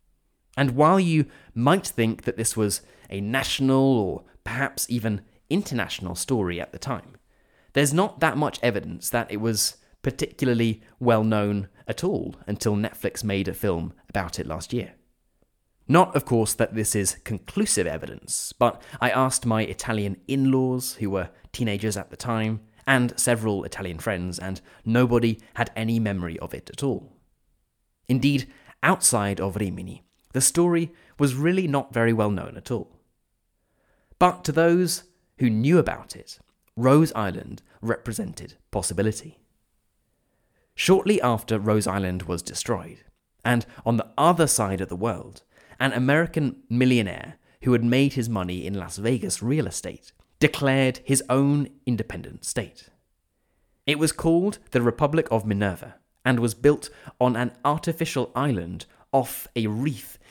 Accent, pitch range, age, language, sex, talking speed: British, 100-135 Hz, 30-49, English, male, 145 wpm